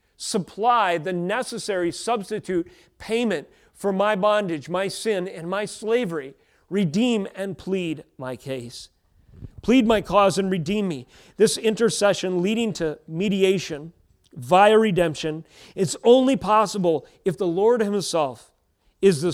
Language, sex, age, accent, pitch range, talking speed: English, male, 40-59, American, 135-185 Hz, 125 wpm